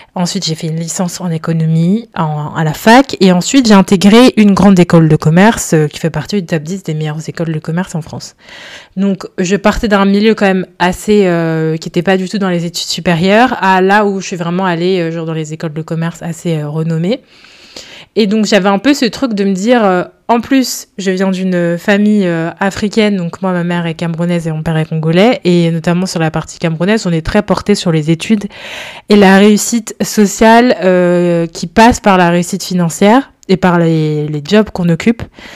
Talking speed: 220 wpm